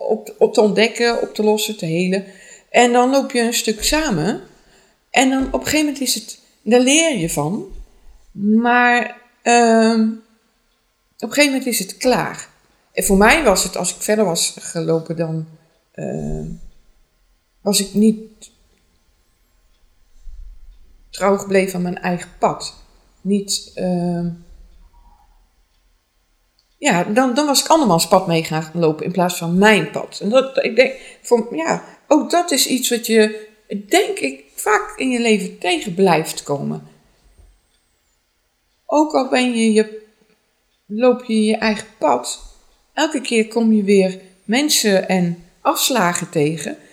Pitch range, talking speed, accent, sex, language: 165-240 Hz, 150 wpm, Dutch, female, English